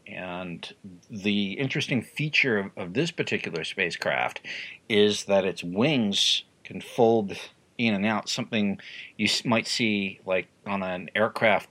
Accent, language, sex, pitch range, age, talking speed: American, English, male, 100-140 Hz, 50-69, 135 wpm